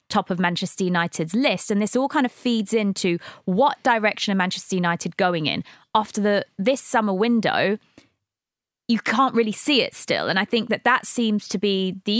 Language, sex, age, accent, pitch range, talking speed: English, female, 20-39, British, 185-225 Hz, 190 wpm